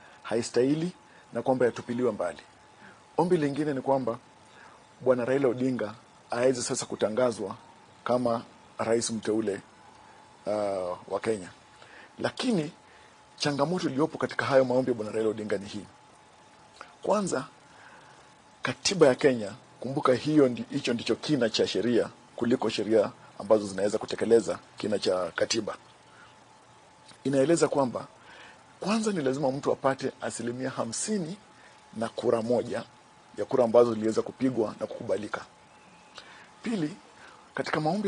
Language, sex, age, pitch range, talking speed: Swahili, male, 50-69, 120-140 Hz, 115 wpm